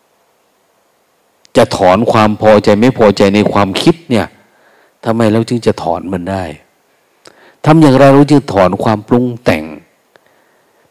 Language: Thai